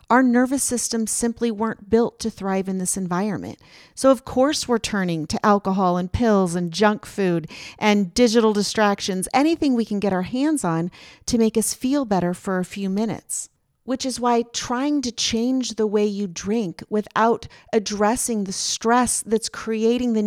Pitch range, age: 190-240 Hz, 40-59